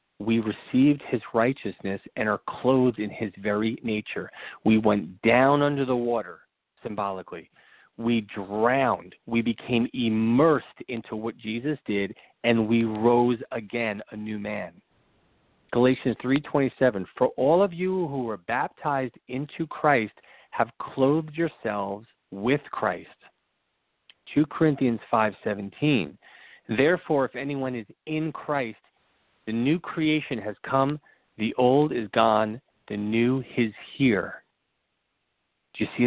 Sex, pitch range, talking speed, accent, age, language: male, 110-140 Hz, 125 wpm, American, 40-59, English